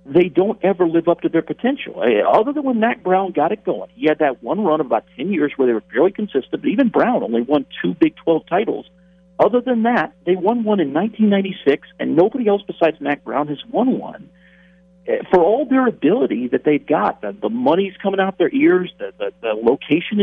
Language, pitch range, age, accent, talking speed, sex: English, 155-210 Hz, 50-69, American, 225 wpm, male